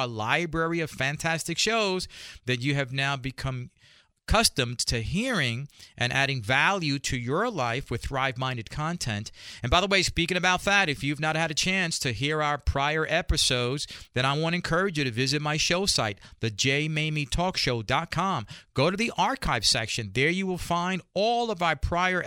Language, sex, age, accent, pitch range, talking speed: English, male, 40-59, American, 130-170 Hz, 175 wpm